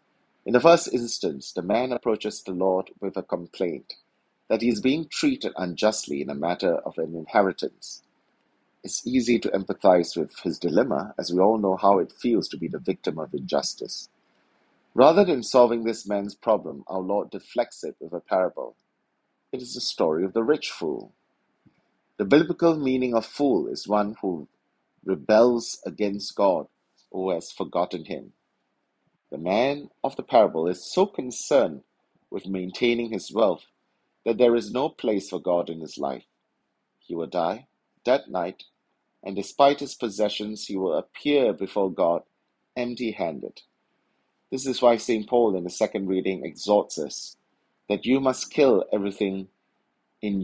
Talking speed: 160 wpm